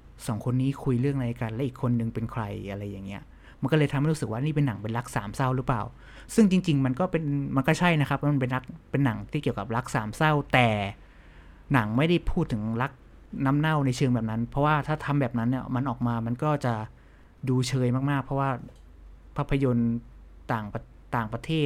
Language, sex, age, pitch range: Thai, male, 20-39, 115-150 Hz